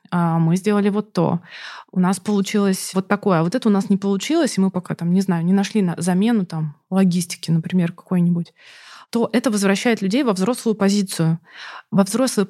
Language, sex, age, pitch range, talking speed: Russian, female, 20-39, 180-215 Hz, 185 wpm